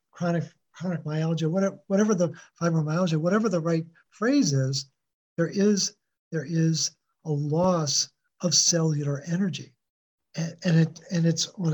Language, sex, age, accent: English, male, 50-69, American